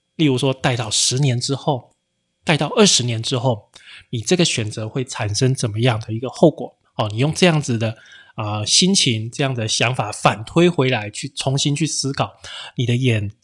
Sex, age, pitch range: male, 20-39, 115-150 Hz